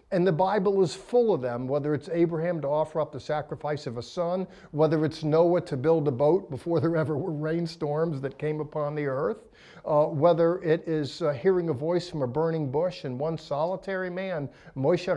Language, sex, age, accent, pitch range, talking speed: English, male, 50-69, American, 135-165 Hz, 205 wpm